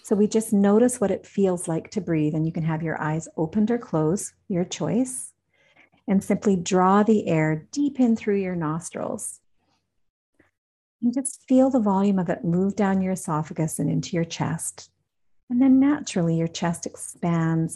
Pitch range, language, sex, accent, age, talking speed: 165-210 Hz, English, female, American, 50-69, 175 wpm